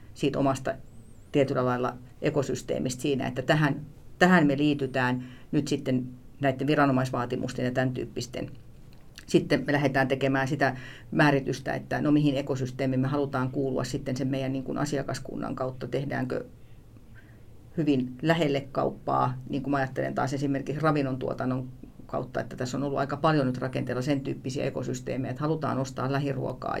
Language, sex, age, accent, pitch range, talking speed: Finnish, female, 40-59, native, 130-140 Hz, 145 wpm